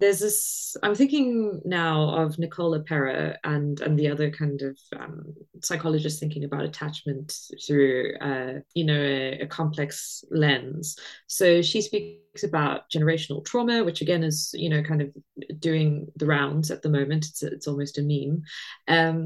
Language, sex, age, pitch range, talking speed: English, female, 20-39, 150-170 Hz, 160 wpm